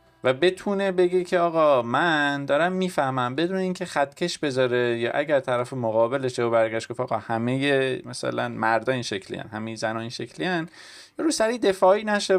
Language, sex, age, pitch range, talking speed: Persian, male, 20-39, 115-160 Hz, 165 wpm